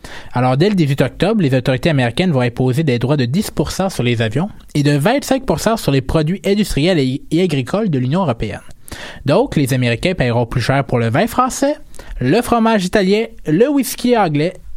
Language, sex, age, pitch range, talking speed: French, male, 20-39, 125-175 Hz, 185 wpm